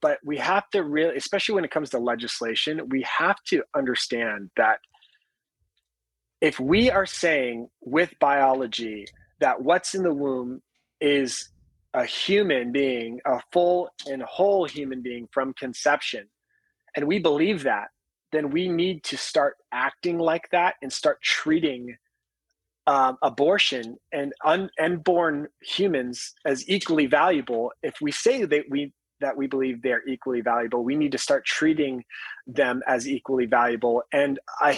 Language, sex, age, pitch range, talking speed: English, male, 30-49, 130-175 Hz, 145 wpm